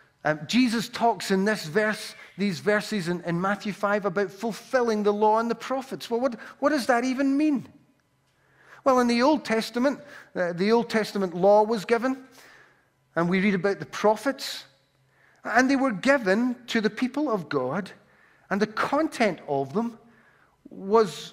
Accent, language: British, English